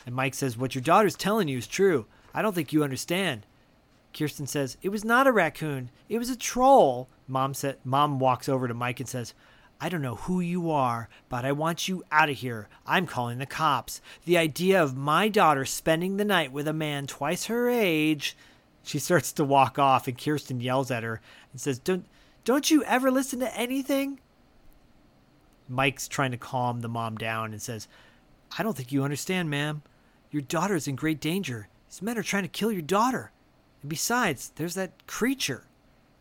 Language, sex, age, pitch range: English, male, 40-59, 125-160 Hz